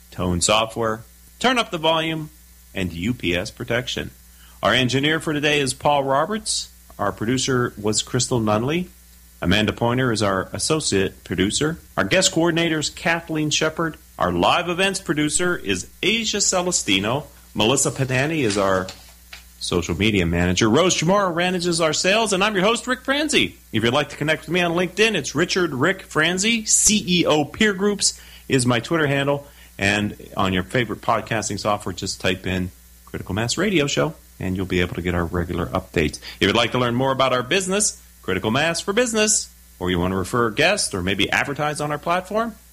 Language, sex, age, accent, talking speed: English, male, 40-59, American, 175 wpm